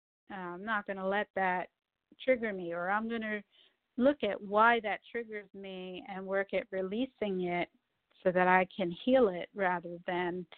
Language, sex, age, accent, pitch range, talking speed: English, female, 50-69, American, 185-230 Hz, 175 wpm